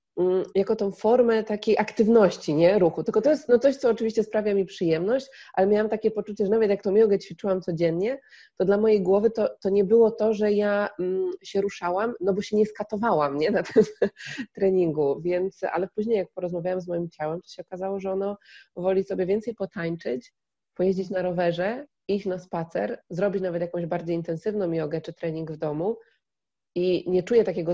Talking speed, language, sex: 195 wpm, Polish, female